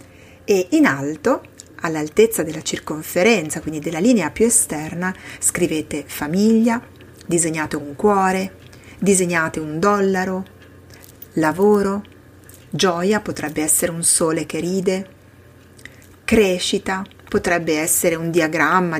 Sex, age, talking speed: female, 30-49, 100 wpm